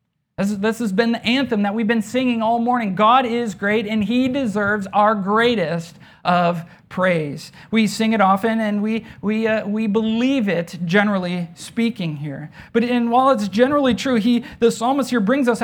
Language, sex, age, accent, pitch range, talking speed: English, male, 40-59, American, 175-225 Hz, 180 wpm